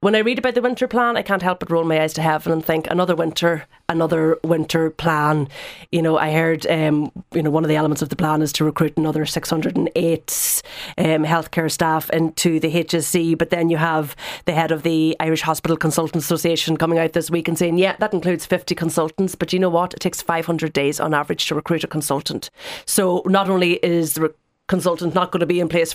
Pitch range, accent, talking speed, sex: 160-185 Hz, Irish, 225 wpm, female